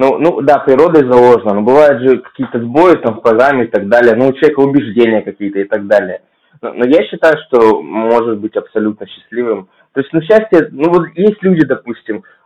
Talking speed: 205 wpm